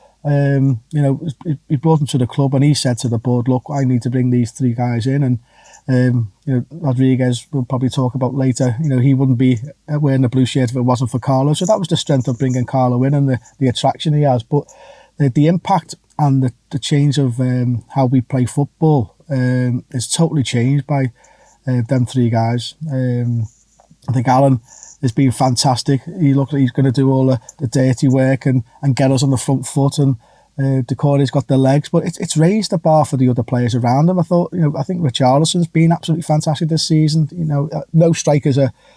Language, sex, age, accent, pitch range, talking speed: English, male, 30-49, British, 130-150 Hz, 230 wpm